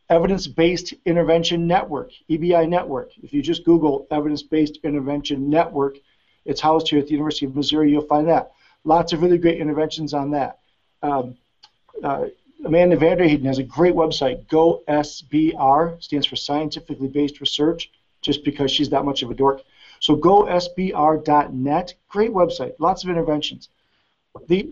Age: 40-59